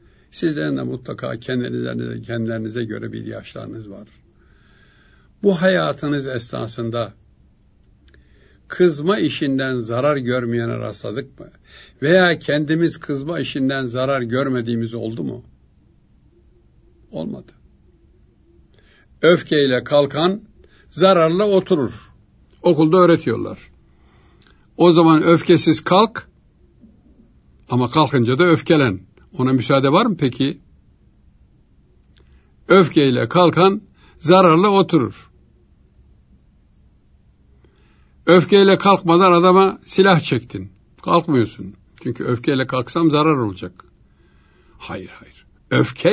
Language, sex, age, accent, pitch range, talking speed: Turkish, male, 60-79, native, 100-165 Hz, 80 wpm